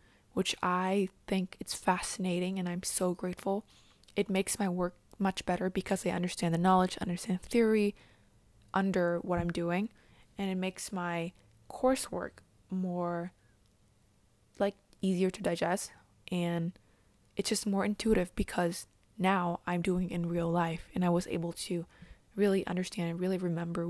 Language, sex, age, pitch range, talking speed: English, female, 20-39, 170-190 Hz, 145 wpm